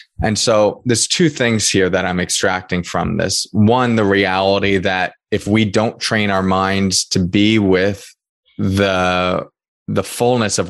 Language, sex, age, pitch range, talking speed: English, male, 20-39, 90-105 Hz, 155 wpm